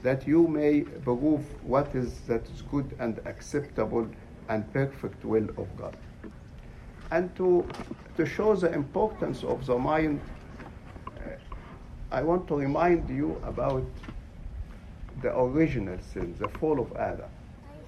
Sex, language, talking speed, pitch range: male, English, 130 wpm, 105-150 Hz